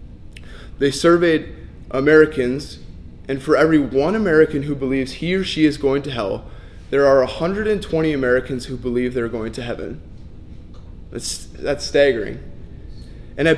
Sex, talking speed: male, 140 wpm